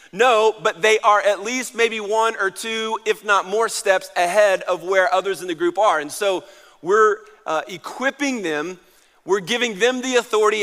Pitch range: 195-245 Hz